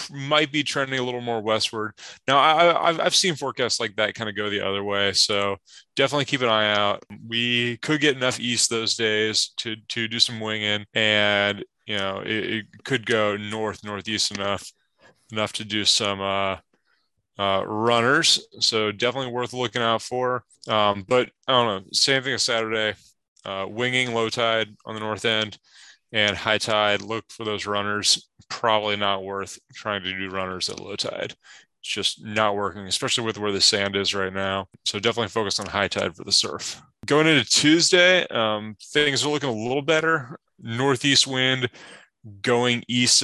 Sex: male